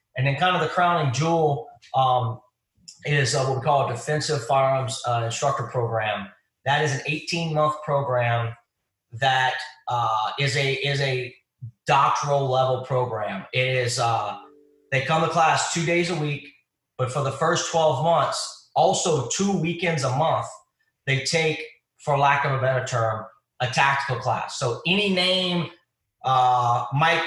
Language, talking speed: English, 155 wpm